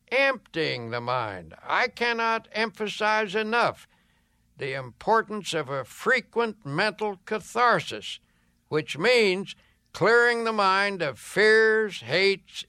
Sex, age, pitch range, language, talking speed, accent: male, 60-79, 140-210 Hz, English, 105 wpm, American